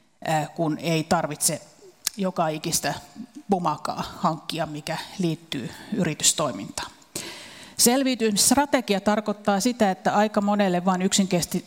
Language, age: Finnish, 30-49